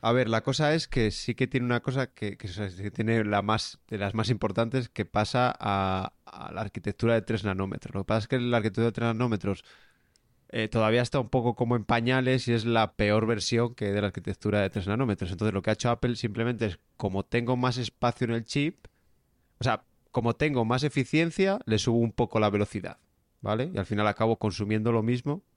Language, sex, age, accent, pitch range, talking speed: Spanish, male, 20-39, Spanish, 105-130 Hz, 225 wpm